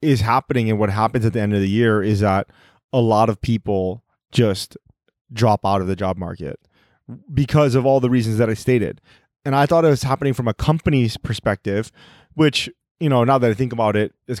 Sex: male